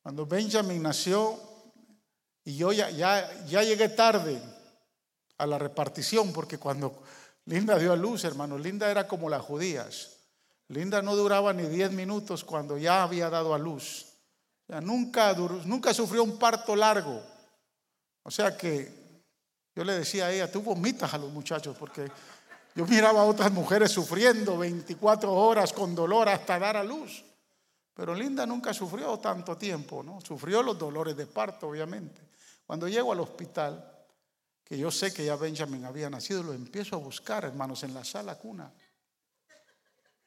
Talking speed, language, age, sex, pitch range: 160 wpm, Spanish, 50-69, male, 155-220 Hz